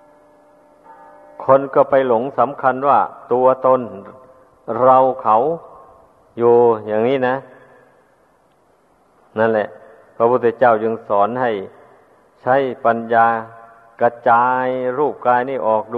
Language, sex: Thai, male